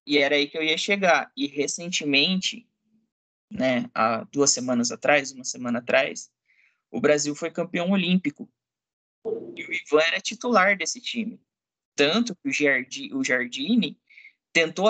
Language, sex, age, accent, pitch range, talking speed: Portuguese, male, 20-39, Brazilian, 145-220 Hz, 135 wpm